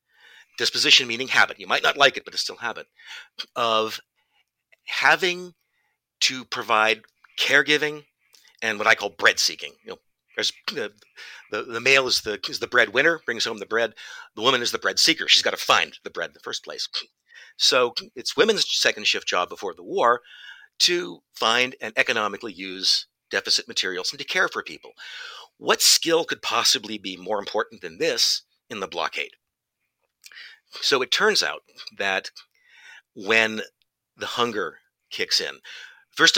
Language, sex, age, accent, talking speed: English, male, 50-69, American, 165 wpm